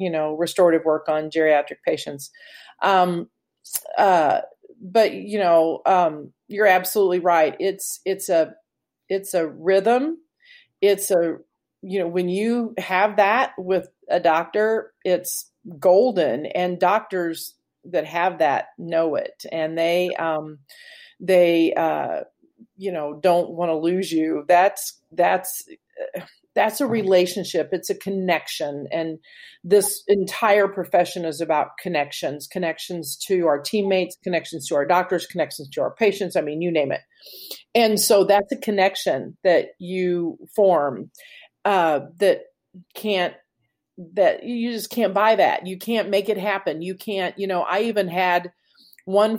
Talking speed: 140 wpm